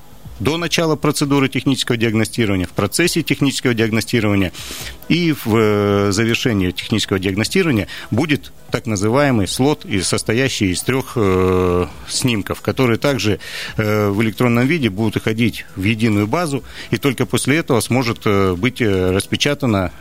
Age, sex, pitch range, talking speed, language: 40-59, male, 100-130 Hz, 115 wpm, Russian